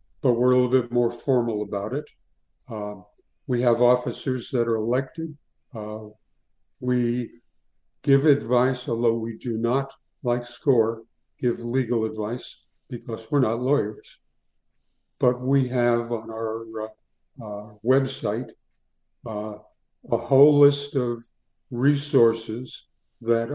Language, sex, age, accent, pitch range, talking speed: English, male, 60-79, American, 115-130 Hz, 120 wpm